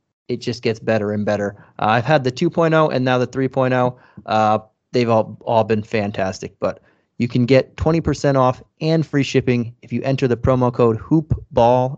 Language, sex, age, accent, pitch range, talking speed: English, male, 30-49, American, 115-135 Hz, 185 wpm